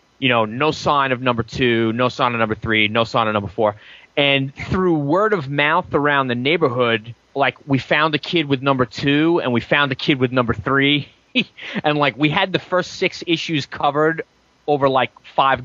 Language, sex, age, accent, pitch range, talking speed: English, male, 20-39, American, 120-150 Hz, 205 wpm